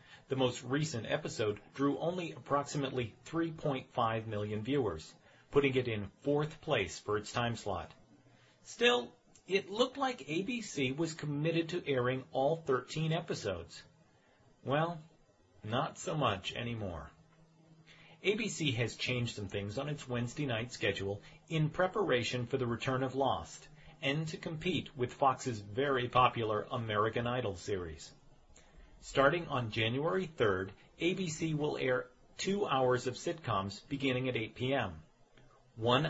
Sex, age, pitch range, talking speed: male, 40-59, 115-150 Hz, 130 wpm